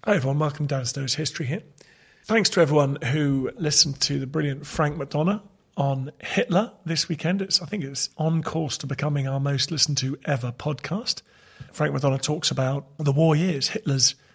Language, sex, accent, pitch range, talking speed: English, male, British, 140-170 Hz, 180 wpm